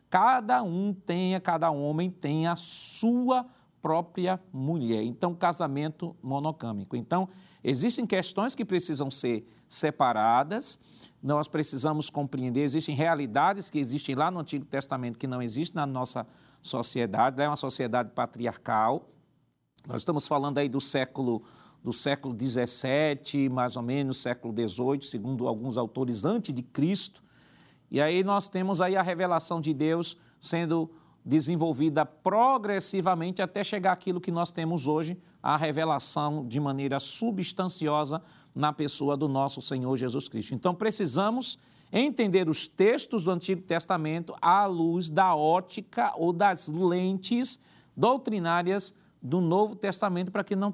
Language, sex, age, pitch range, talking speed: Portuguese, male, 50-69, 140-185 Hz, 135 wpm